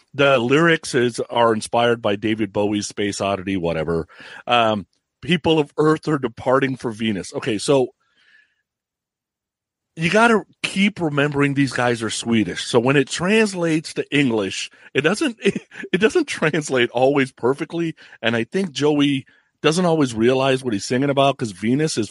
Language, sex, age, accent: English, male, 40-59, American